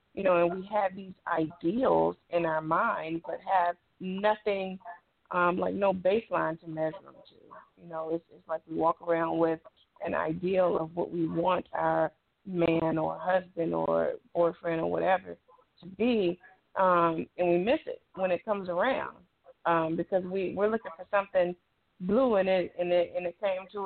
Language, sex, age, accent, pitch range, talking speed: English, female, 20-39, American, 165-200 Hz, 180 wpm